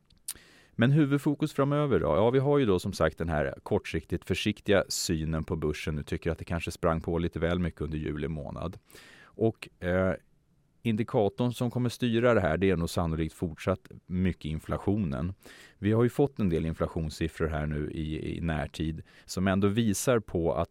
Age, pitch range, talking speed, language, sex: 30-49, 80-95 Hz, 180 wpm, Swedish, male